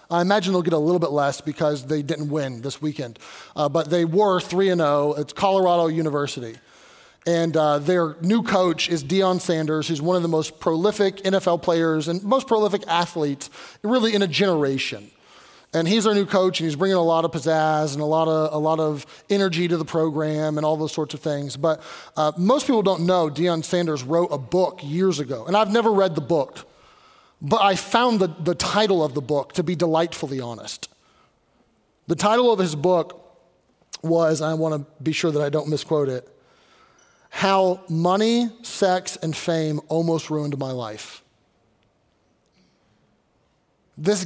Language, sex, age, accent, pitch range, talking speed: English, male, 30-49, American, 150-180 Hz, 180 wpm